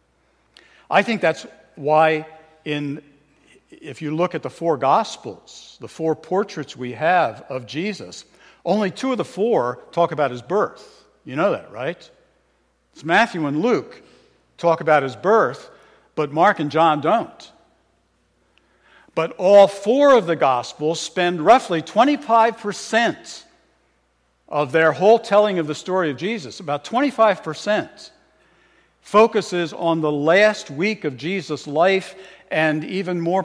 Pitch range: 145-190 Hz